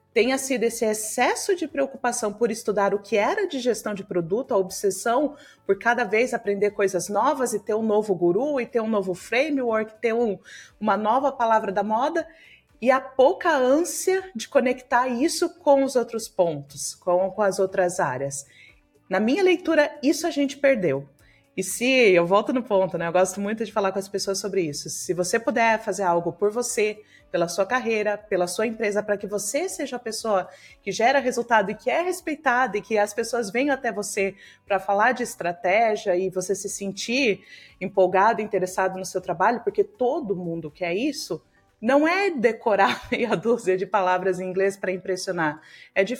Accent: Brazilian